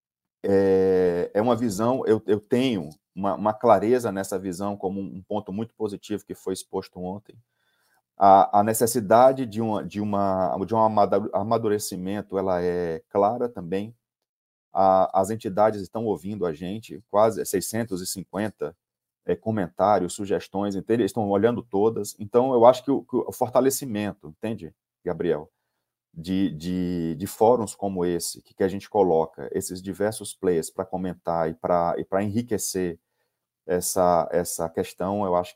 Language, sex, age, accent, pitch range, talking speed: Portuguese, male, 30-49, Brazilian, 95-110 Hz, 130 wpm